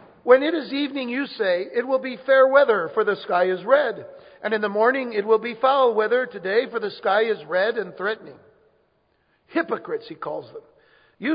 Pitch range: 205-265 Hz